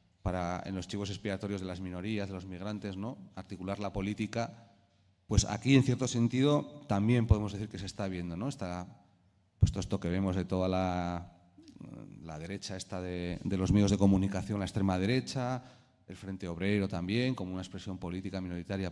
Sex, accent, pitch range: male, Spanish, 95-110 Hz